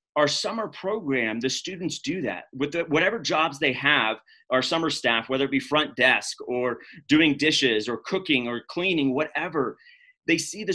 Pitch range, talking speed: 135-175 Hz, 180 wpm